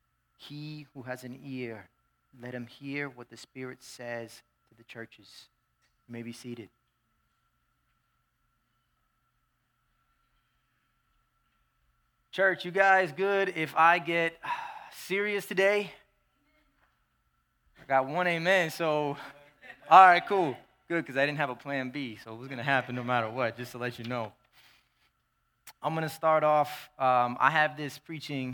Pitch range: 120-150 Hz